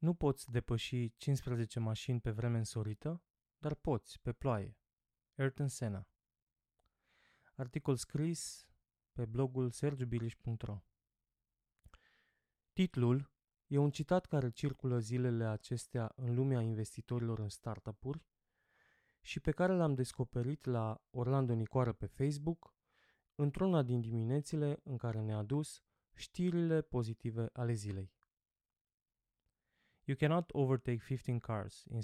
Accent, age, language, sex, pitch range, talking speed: native, 20-39, Romanian, male, 115-145 Hz, 110 wpm